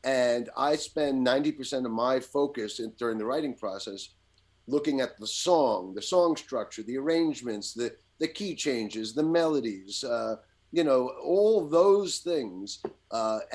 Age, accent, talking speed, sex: 40-59, American, 150 wpm, male